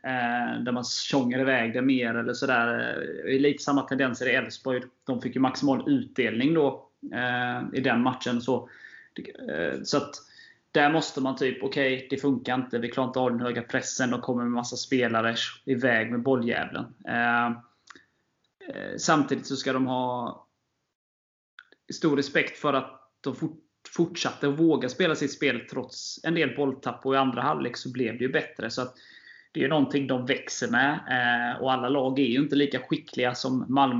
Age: 20-39